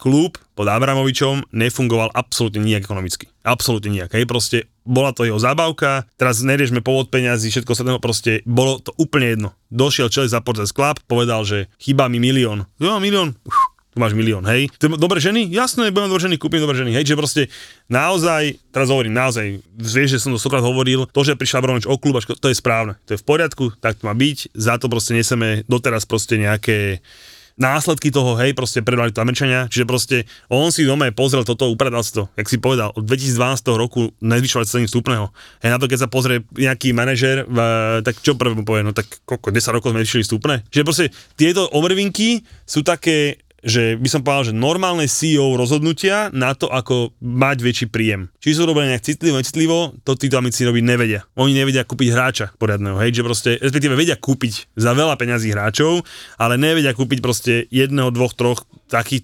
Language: Slovak